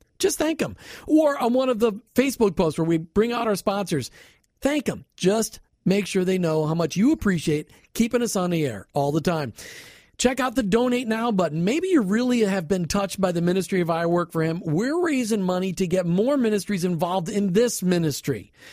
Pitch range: 170-230 Hz